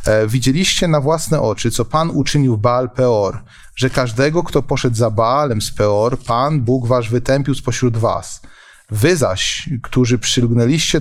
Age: 30-49